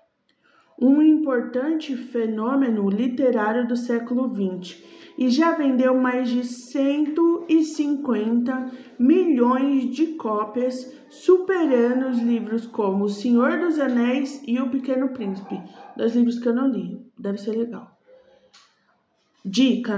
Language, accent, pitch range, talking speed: Portuguese, Brazilian, 230-285 Hz, 115 wpm